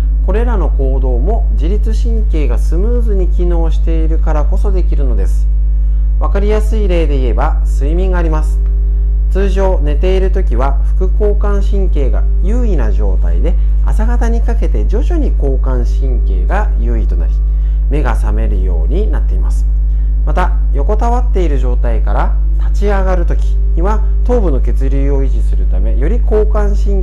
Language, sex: Japanese, male